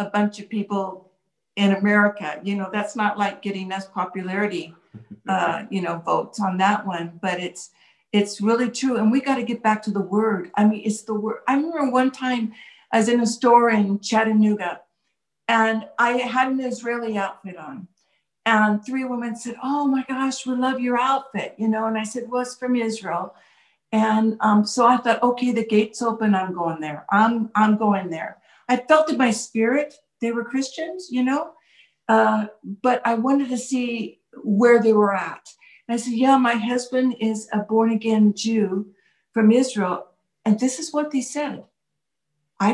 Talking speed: 185 wpm